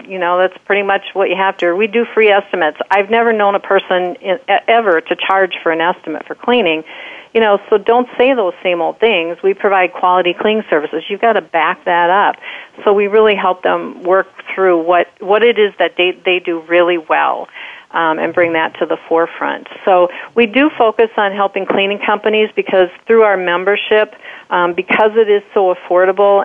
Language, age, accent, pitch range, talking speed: English, 50-69, American, 175-210 Hz, 200 wpm